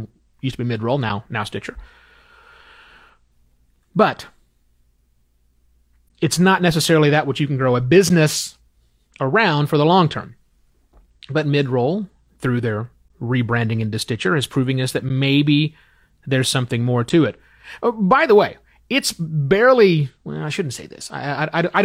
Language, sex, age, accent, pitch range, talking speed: English, male, 30-49, American, 115-155 Hz, 150 wpm